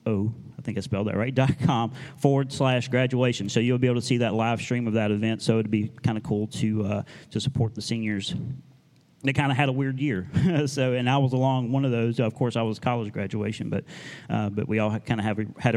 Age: 30-49